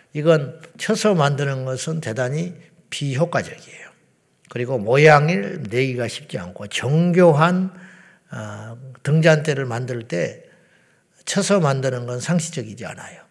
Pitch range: 135-180 Hz